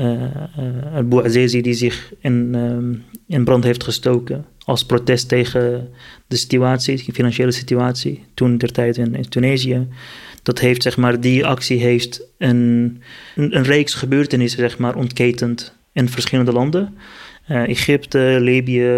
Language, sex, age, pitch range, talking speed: Dutch, male, 30-49, 120-135 Hz, 150 wpm